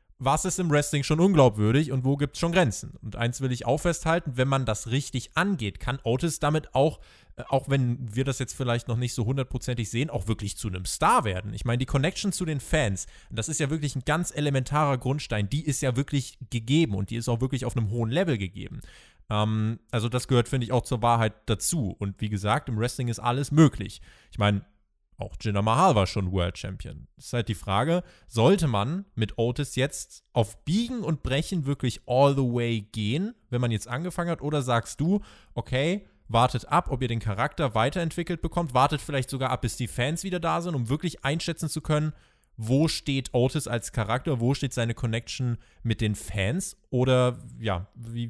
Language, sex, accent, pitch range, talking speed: German, male, German, 110-145 Hz, 205 wpm